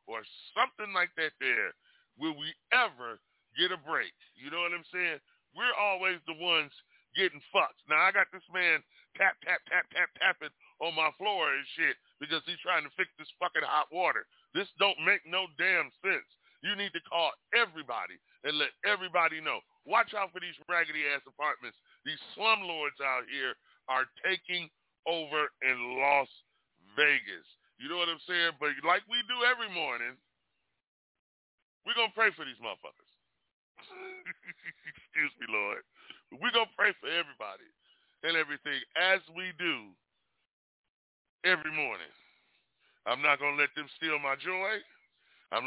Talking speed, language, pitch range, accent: 160 wpm, English, 140-200 Hz, American